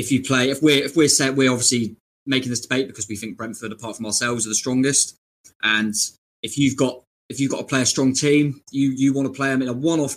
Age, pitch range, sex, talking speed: 20-39, 110-135 Hz, male, 260 wpm